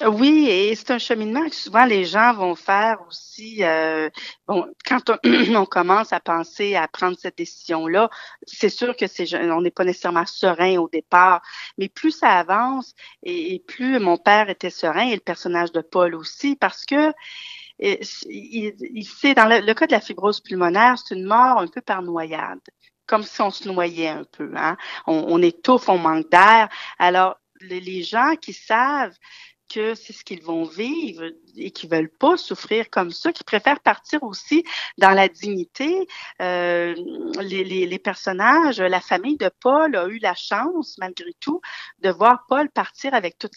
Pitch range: 180-265 Hz